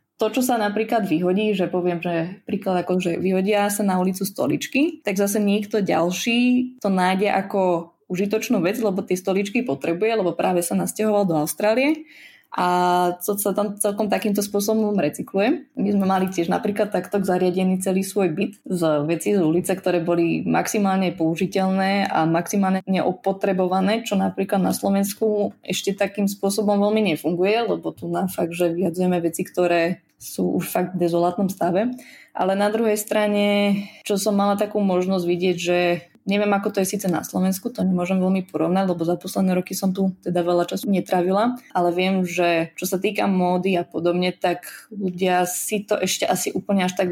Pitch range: 180-205 Hz